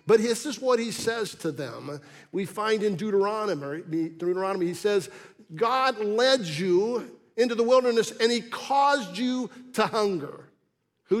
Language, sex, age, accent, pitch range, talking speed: English, male, 50-69, American, 185-250 Hz, 150 wpm